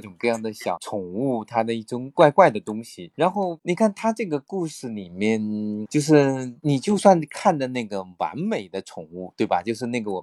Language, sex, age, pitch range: Chinese, male, 20-39, 110-160 Hz